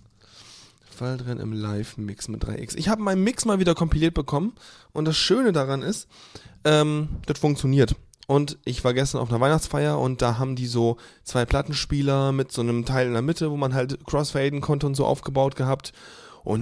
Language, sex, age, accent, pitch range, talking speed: German, male, 20-39, German, 125-155 Hz, 190 wpm